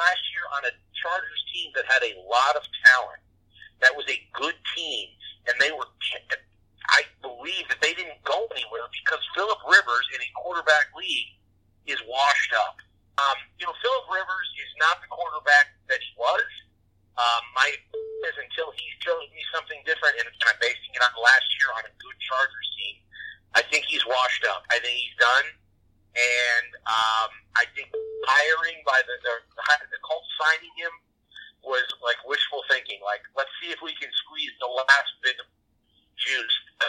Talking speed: 175 wpm